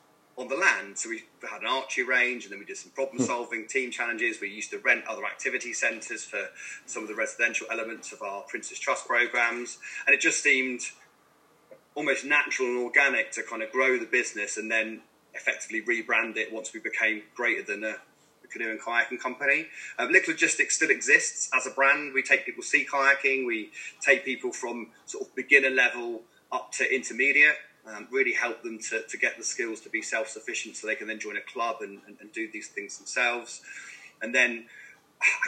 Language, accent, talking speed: English, British, 200 wpm